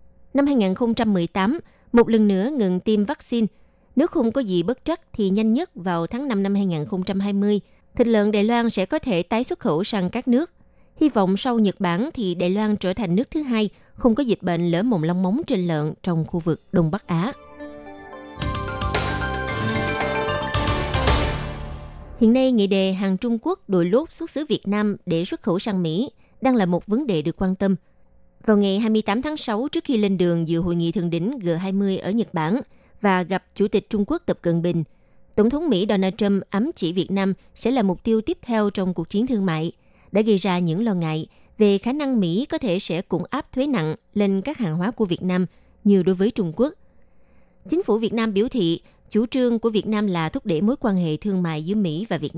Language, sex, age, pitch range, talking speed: Vietnamese, female, 20-39, 175-230 Hz, 215 wpm